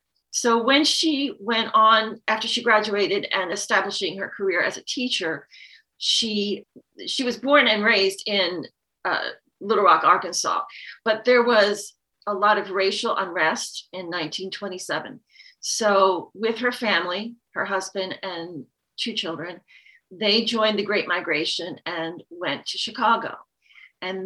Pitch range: 190-235 Hz